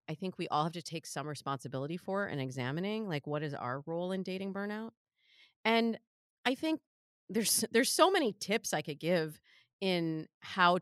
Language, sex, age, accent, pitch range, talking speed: English, female, 30-49, American, 145-190 Hz, 185 wpm